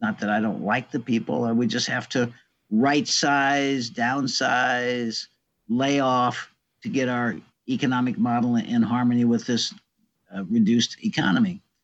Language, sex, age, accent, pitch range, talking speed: English, male, 60-79, American, 115-175 Hz, 140 wpm